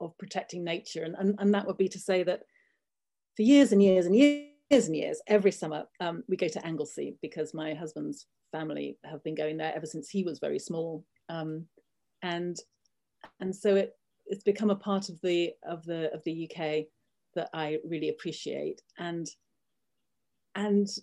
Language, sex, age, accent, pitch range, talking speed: English, female, 40-59, British, 155-195 Hz, 180 wpm